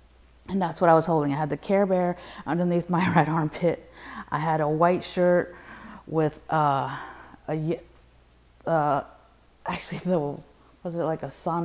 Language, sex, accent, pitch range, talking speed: English, female, American, 145-170 Hz, 155 wpm